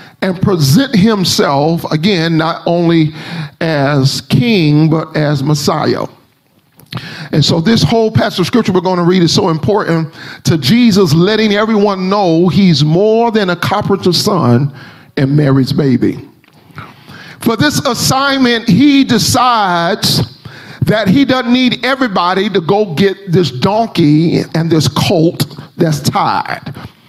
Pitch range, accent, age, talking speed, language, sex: 150-210 Hz, American, 40-59, 130 wpm, English, male